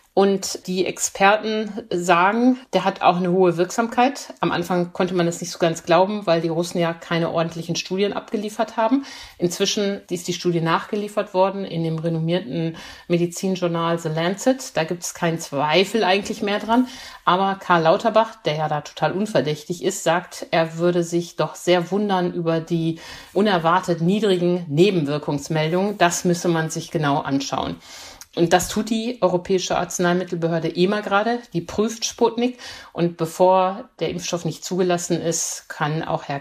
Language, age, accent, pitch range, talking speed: German, 50-69, German, 160-190 Hz, 160 wpm